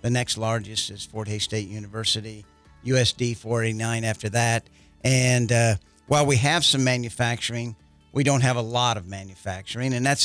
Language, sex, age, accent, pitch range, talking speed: English, male, 50-69, American, 110-130 Hz, 165 wpm